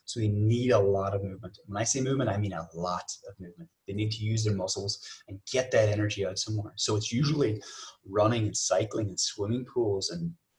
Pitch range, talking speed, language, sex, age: 105-130 Hz, 220 wpm, English, male, 20-39